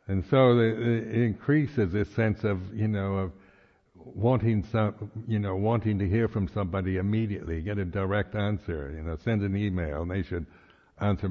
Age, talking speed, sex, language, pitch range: 60-79, 175 wpm, male, English, 90-115 Hz